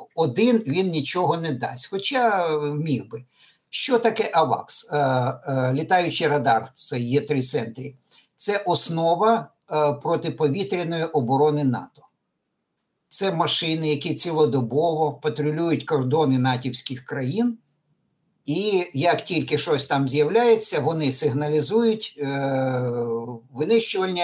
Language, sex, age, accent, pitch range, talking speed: Ukrainian, male, 60-79, native, 140-190 Hz, 100 wpm